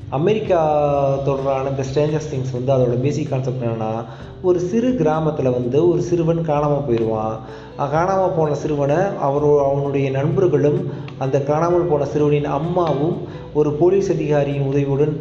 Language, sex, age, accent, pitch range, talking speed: Tamil, male, 30-49, native, 130-160 Hz, 130 wpm